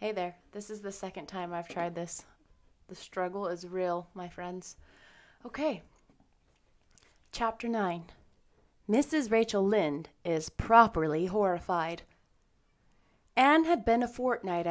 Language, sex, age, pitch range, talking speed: English, female, 30-49, 185-250 Hz, 120 wpm